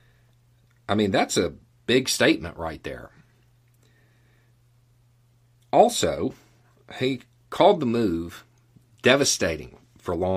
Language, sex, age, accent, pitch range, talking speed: English, male, 40-59, American, 90-120 Hz, 95 wpm